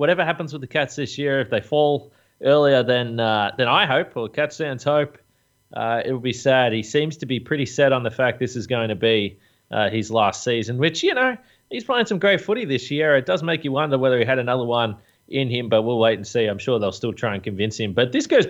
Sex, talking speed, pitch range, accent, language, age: male, 265 wpm, 120-160 Hz, Australian, English, 30-49